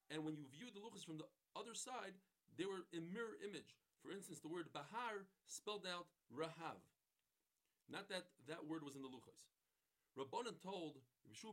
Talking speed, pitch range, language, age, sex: 175 wpm, 155-200 Hz, English, 40-59, male